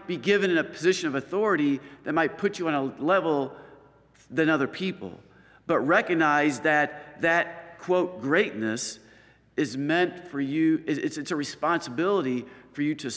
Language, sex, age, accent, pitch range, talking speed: English, male, 50-69, American, 130-165 Hz, 150 wpm